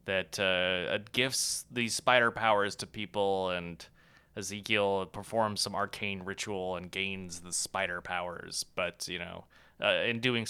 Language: English